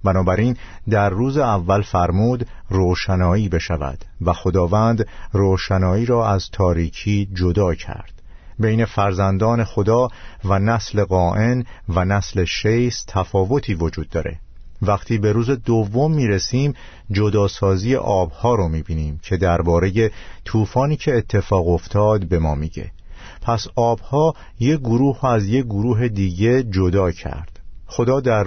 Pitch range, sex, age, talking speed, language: 90-115 Hz, male, 50-69, 120 wpm, Persian